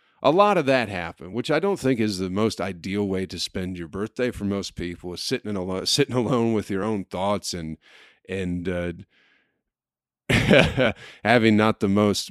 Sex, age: male, 30-49